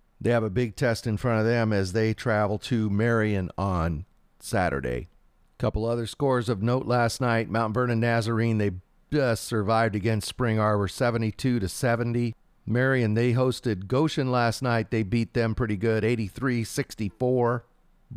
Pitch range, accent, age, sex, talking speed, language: 105-125 Hz, American, 40-59, male, 150 wpm, English